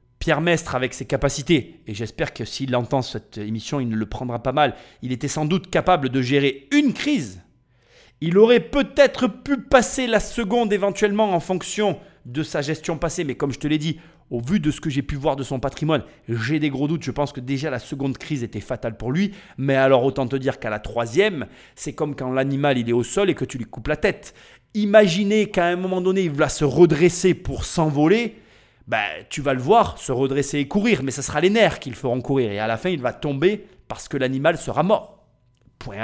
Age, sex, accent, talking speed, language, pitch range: 30-49, male, French, 230 wpm, French, 125-175 Hz